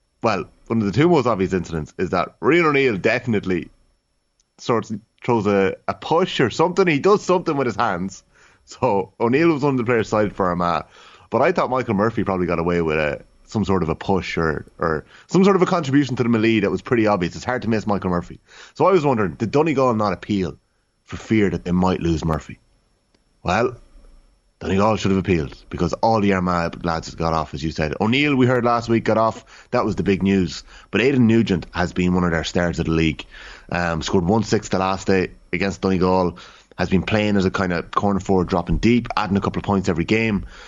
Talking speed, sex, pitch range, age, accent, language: 225 wpm, male, 90-115 Hz, 30-49, Irish, English